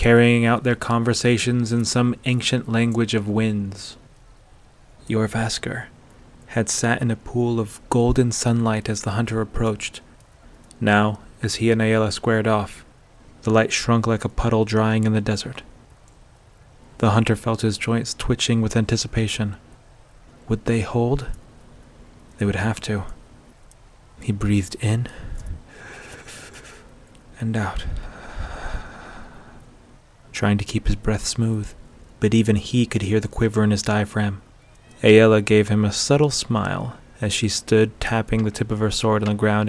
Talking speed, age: 140 wpm, 30-49